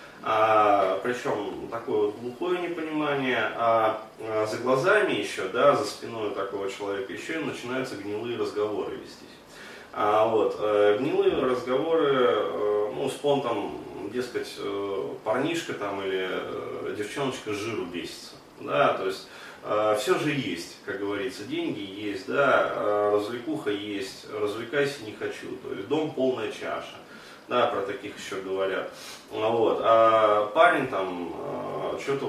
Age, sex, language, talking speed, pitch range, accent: 30-49, male, Russian, 125 wpm, 110-185 Hz, native